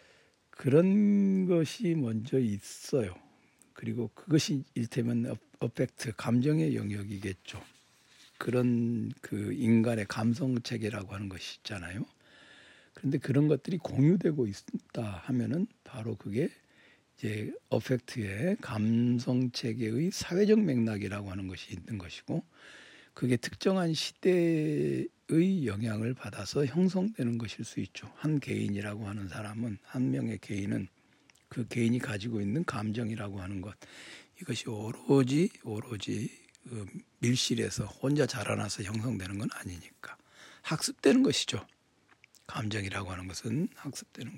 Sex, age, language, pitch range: male, 60-79, Korean, 105-140 Hz